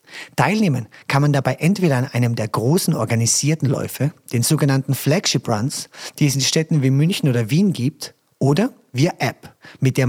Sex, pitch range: male, 125-160 Hz